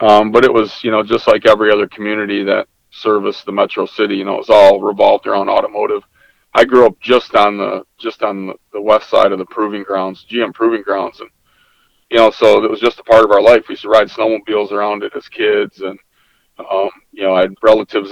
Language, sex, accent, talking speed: English, male, American, 230 wpm